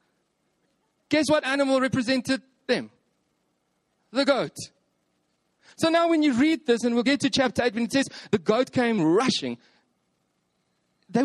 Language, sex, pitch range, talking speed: English, male, 160-260 Hz, 145 wpm